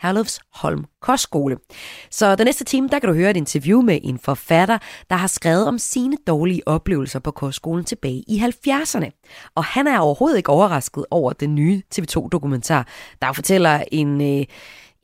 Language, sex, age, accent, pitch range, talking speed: Danish, female, 30-49, native, 150-205 Hz, 170 wpm